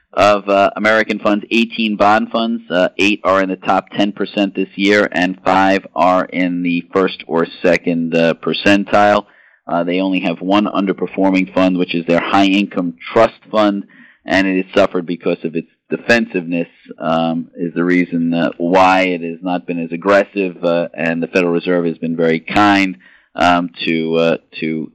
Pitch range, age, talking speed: 85-100 Hz, 40-59, 175 wpm